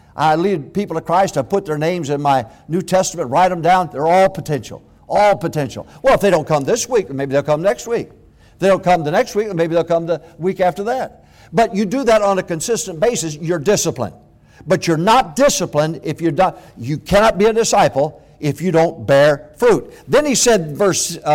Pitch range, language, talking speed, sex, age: 145-200 Hz, English, 220 wpm, male, 60-79